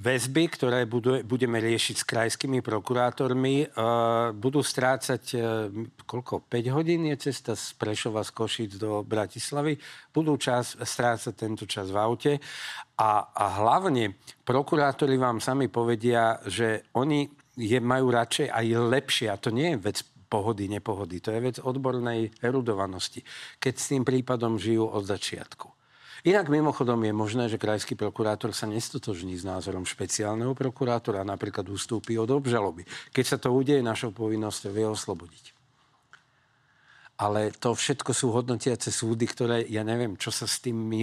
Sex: male